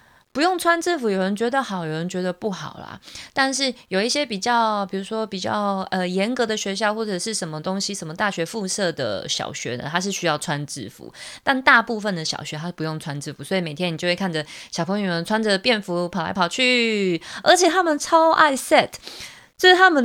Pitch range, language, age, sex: 170-220 Hz, Chinese, 20-39, female